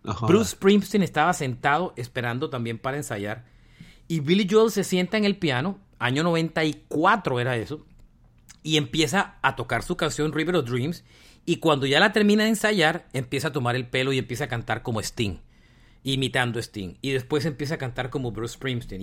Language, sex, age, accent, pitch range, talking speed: Spanish, male, 40-59, Mexican, 125-175 Hz, 185 wpm